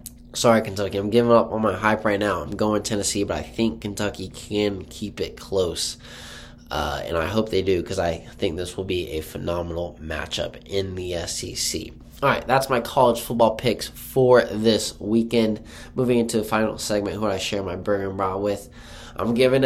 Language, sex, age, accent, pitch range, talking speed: English, male, 20-39, American, 100-120 Hz, 195 wpm